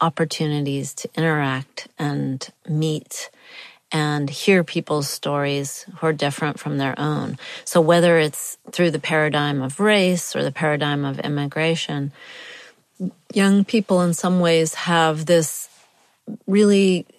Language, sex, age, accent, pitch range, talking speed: English, female, 40-59, American, 145-170 Hz, 125 wpm